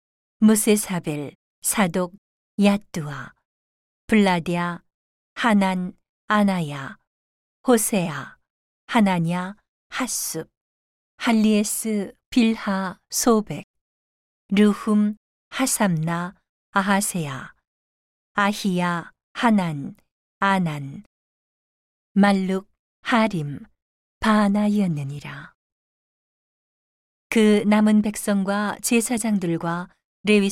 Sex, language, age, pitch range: female, Korean, 40-59, 170-210 Hz